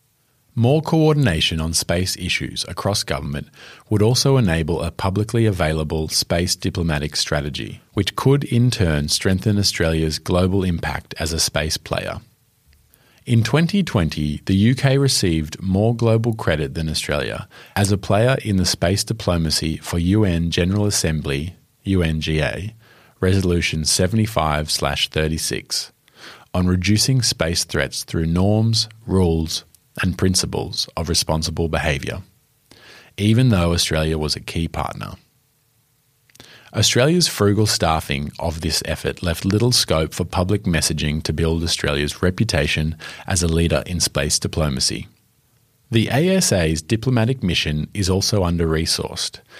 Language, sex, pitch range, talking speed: English, male, 80-115 Hz, 120 wpm